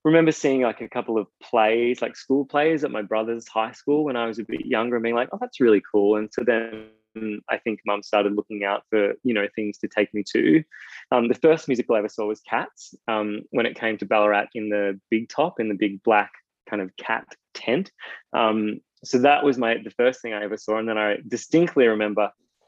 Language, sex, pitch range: English, male, 105-125 Hz